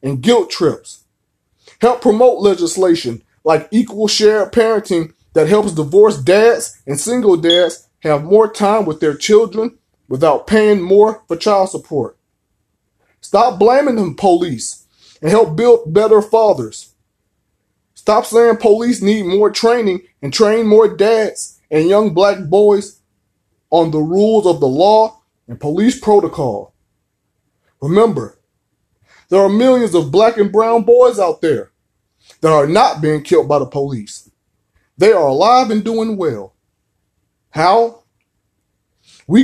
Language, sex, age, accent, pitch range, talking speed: English, male, 20-39, American, 155-220 Hz, 135 wpm